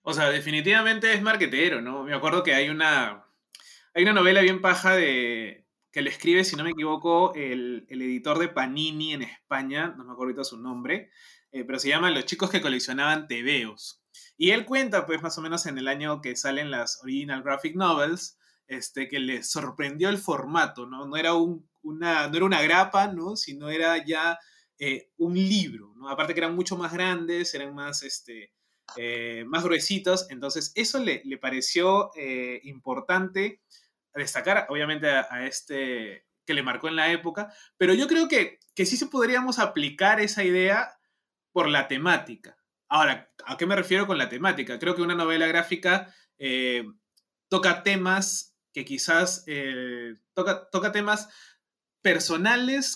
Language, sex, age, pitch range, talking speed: Spanish, male, 20-39, 135-185 Hz, 170 wpm